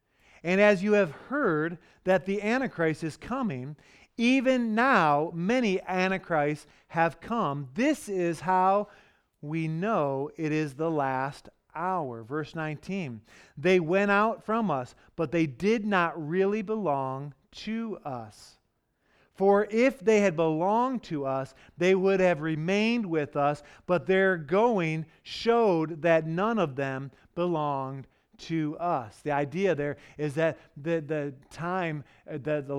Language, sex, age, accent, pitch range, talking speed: English, male, 40-59, American, 150-200 Hz, 145 wpm